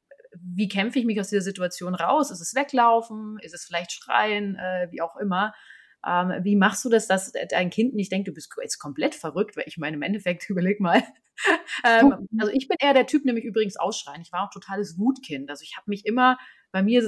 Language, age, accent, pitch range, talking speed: German, 30-49, German, 185-220 Hz, 225 wpm